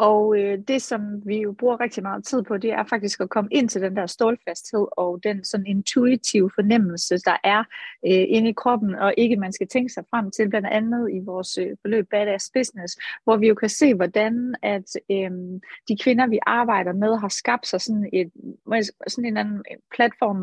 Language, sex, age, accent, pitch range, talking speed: Danish, female, 30-49, native, 200-250 Hz, 215 wpm